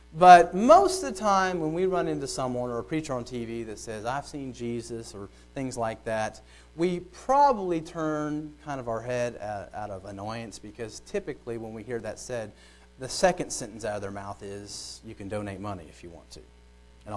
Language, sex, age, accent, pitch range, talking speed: English, male, 30-49, American, 115-170 Hz, 205 wpm